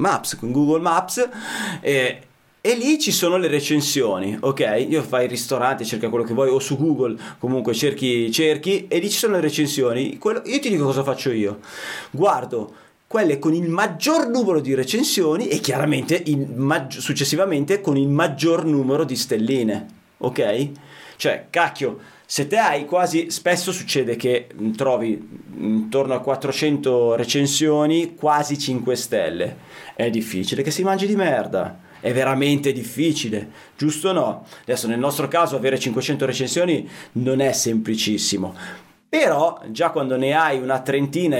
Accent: native